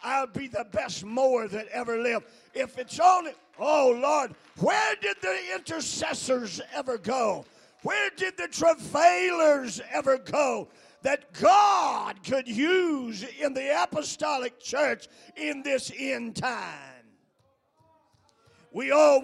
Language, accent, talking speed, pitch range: English, American, 120 wpm, 240-305 Hz